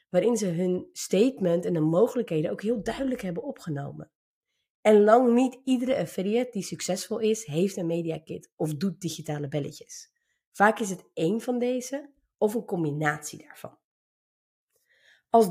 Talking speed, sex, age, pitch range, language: 150 wpm, female, 30-49, 170-230 Hz, Dutch